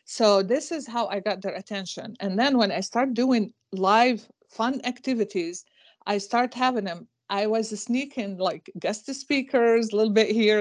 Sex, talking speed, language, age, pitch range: female, 175 wpm, English, 50-69, 195-235 Hz